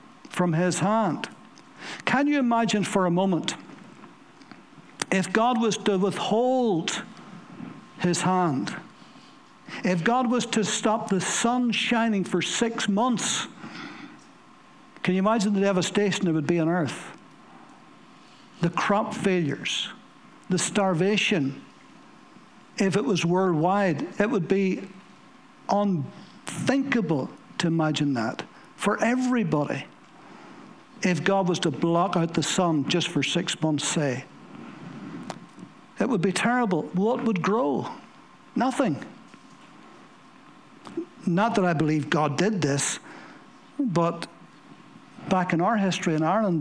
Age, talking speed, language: 60-79, 115 wpm, English